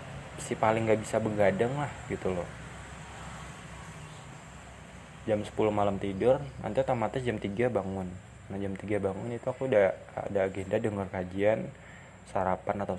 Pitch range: 95-110 Hz